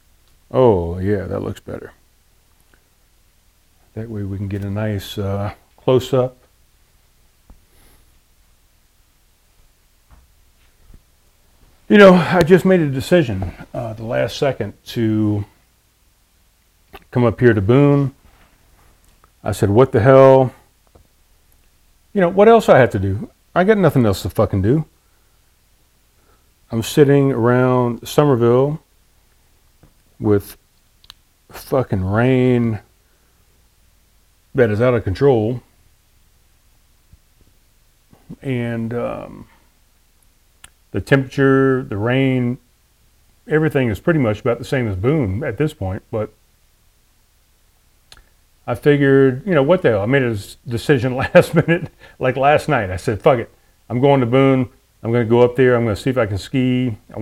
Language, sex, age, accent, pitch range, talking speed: English, male, 40-59, American, 85-130 Hz, 130 wpm